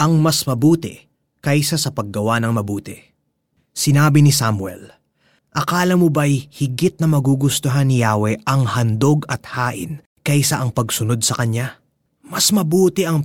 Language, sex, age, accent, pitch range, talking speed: Filipino, male, 20-39, native, 120-165 Hz, 140 wpm